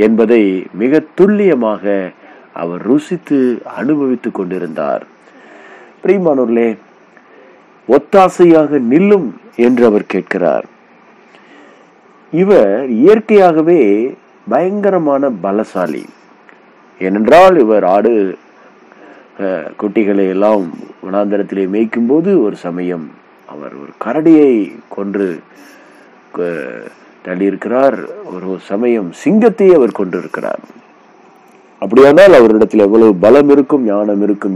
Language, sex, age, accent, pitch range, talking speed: Tamil, male, 50-69, native, 100-150 Hz, 70 wpm